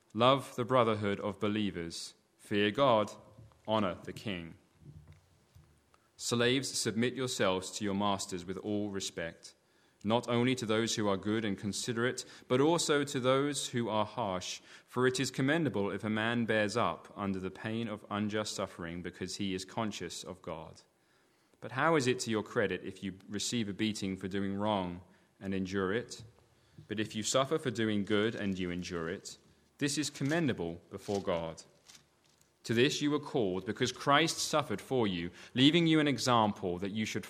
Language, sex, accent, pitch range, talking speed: English, male, British, 95-125 Hz, 170 wpm